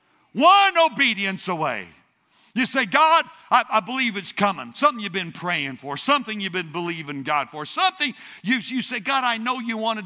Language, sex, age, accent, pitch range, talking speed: English, male, 60-79, American, 160-255 Hz, 190 wpm